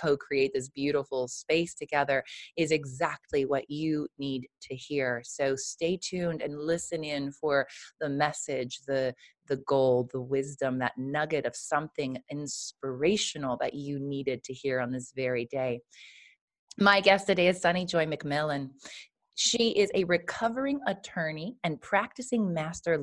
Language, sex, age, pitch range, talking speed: English, female, 30-49, 140-185 Hz, 145 wpm